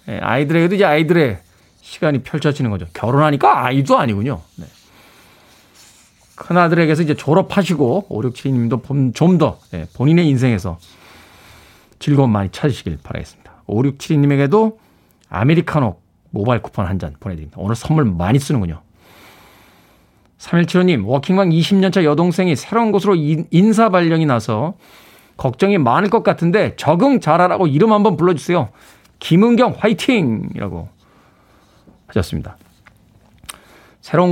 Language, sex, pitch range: Korean, male, 120-180 Hz